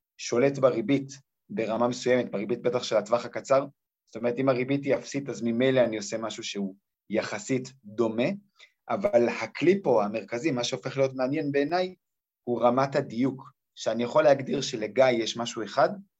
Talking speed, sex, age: 155 wpm, male, 30-49